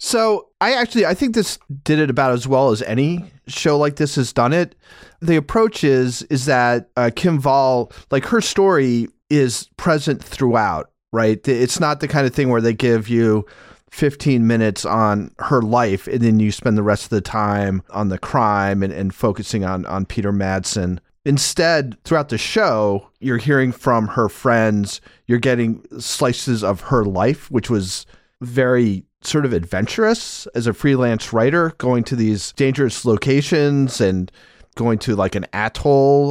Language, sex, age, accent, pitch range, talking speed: English, male, 30-49, American, 105-140 Hz, 170 wpm